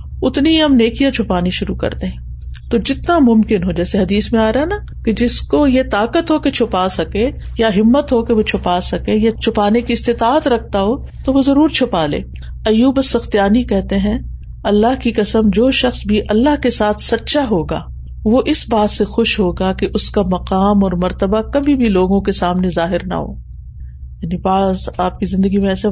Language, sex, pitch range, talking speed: Urdu, female, 180-230 Hz, 195 wpm